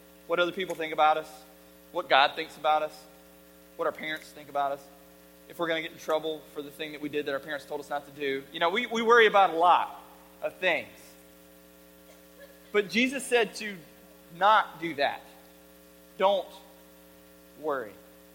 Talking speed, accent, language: 185 wpm, American, English